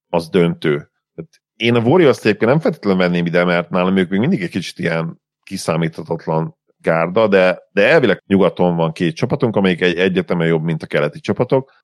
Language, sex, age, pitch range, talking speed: Hungarian, male, 40-59, 85-115 Hz, 170 wpm